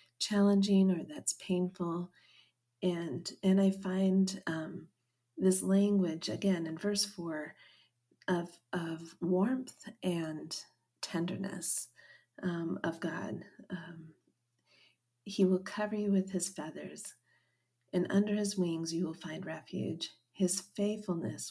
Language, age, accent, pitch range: English, 40-59, American, 170-195 Hz